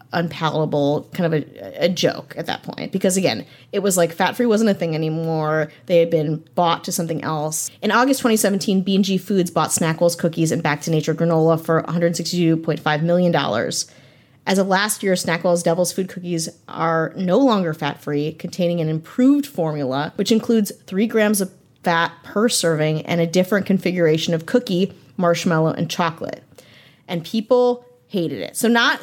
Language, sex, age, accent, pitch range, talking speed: English, female, 30-49, American, 170-240 Hz, 165 wpm